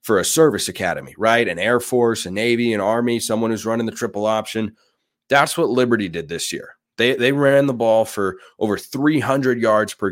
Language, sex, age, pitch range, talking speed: English, male, 30-49, 100-120 Hz, 200 wpm